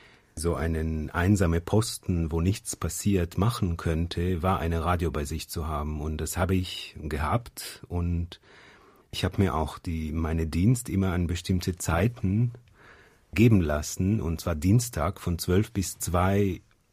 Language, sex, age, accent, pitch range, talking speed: German, male, 40-59, German, 80-100 Hz, 150 wpm